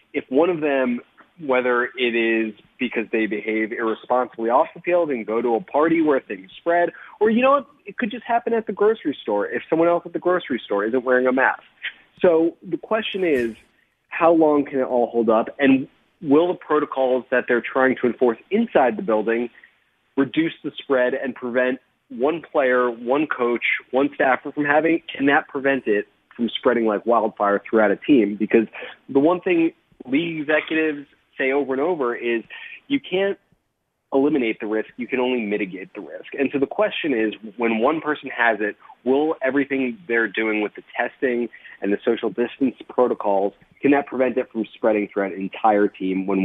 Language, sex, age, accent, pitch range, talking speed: English, male, 30-49, American, 115-160 Hz, 190 wpm